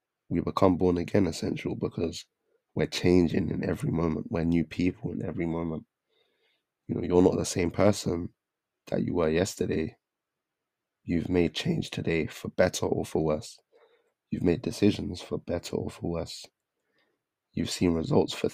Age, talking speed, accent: 20-39, 160 wpm, British